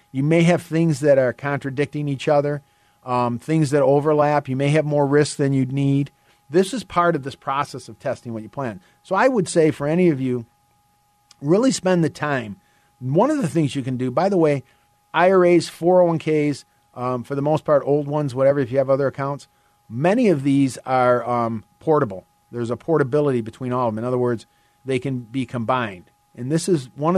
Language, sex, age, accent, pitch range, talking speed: English, male, 40-59, American, 125-155 Hz, 205 wpm